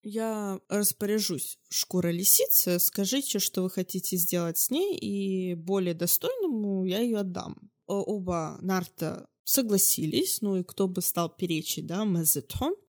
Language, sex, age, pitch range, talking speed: Russian, female, 20-39, 175-235 Hz, 130 wpm